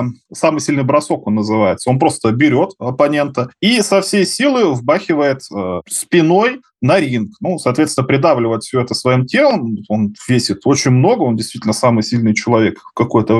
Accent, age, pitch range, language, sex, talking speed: native, 20-39, 120-160 Hz, Russian, male, 160 wpm